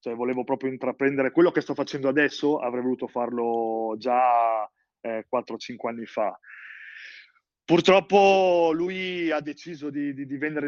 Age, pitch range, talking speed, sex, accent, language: 20-39, 125-150 Hz, 135 wpm, male, native, Italian